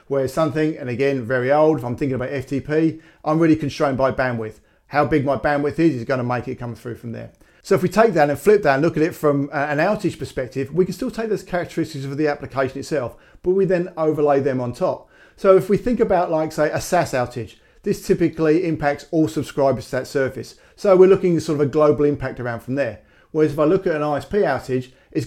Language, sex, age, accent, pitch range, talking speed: English, male, 50-69, British, 135-160 Hz, 240 wpm